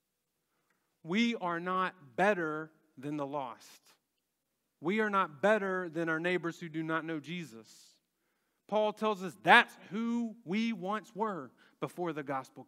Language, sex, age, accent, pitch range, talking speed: English, male, 30-49, American, 170-240 Hz, 140 wpm